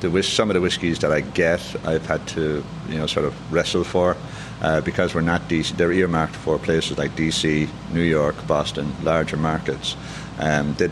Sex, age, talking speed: male, 60-79, 190 wpm